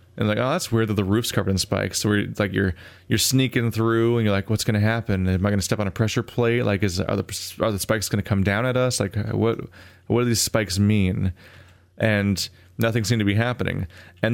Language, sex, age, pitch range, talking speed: English, male, 20-39, 95-115 Hz, 255 wpm